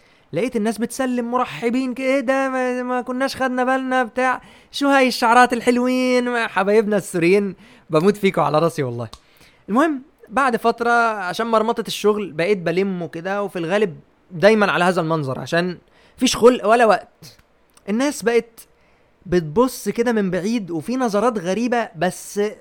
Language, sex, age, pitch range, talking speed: Arabic, male, 20-39, 190-245 Hz, 135 wpm